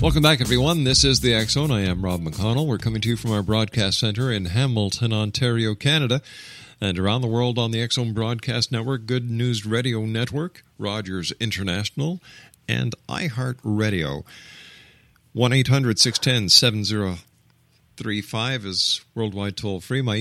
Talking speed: 135 wpm